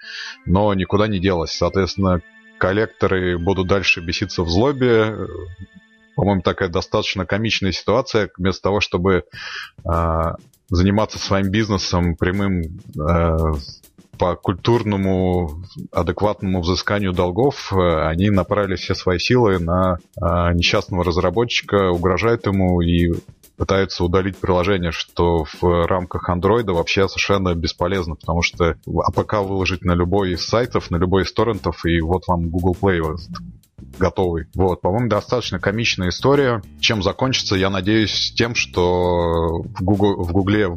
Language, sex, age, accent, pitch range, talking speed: Russian, male, 30-49, native, 90-100 Hz, 125 wpm